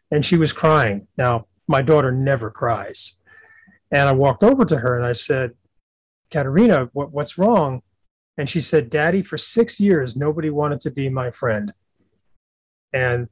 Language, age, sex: English, 40-59, male